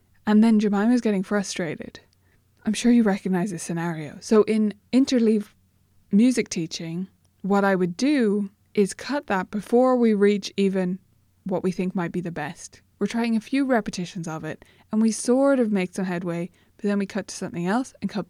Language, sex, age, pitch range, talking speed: English, female, 20-39, 180-220 Hz, 185 wpm